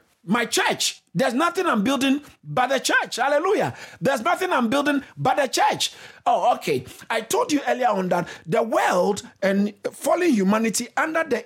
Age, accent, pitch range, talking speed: 50-69, Nigerian, 190-305 Hz, 170 wpm